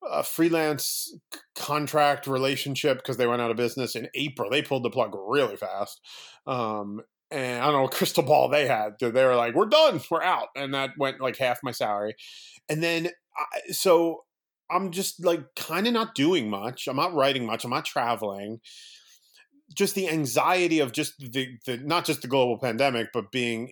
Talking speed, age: 190 wpm, 30-49